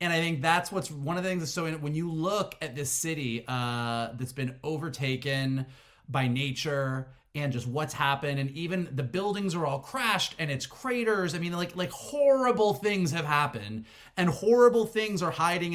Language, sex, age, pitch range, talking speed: English, male, 30-49, 130-165 Hz, 190 wpm